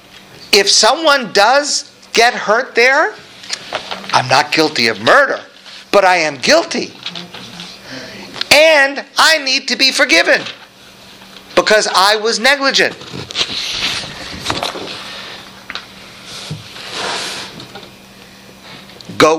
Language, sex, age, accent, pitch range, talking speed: English, male, 50-69, American, 195-250 Hz, 80 wpm